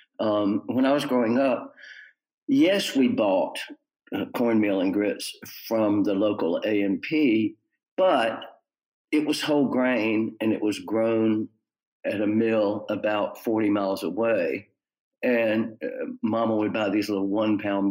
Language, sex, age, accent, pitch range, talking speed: English, male, 50-69, American, 100-140 Hz, 140 wpm